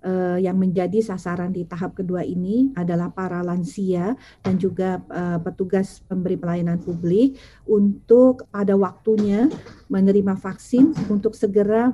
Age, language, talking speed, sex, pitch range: 40-59, Indonesian, 115 wpm, female, 185-220 Hz